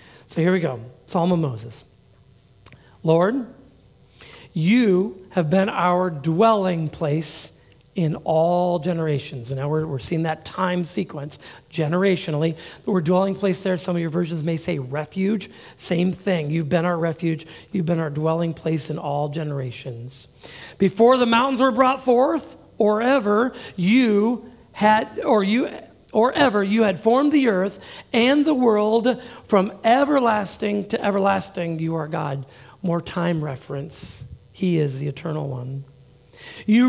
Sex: male